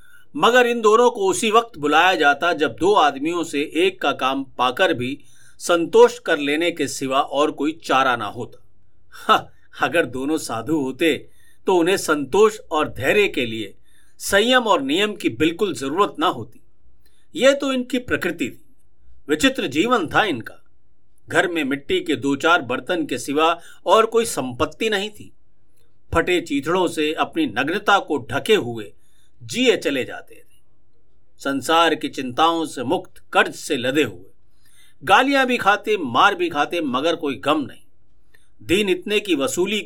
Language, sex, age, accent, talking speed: Hindi, male, 50-69, native, 155 wpm